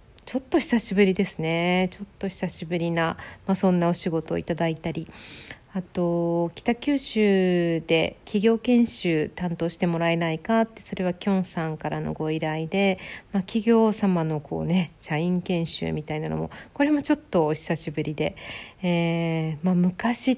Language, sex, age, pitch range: Japanese, female, 50-69, 165-210 Hz